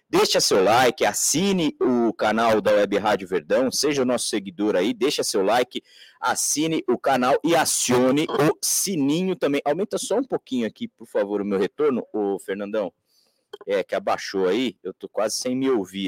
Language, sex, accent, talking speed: Portuguese, male, Brazilian, 180 wpm